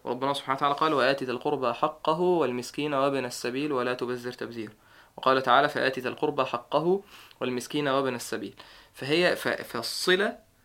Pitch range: 125-160 Hz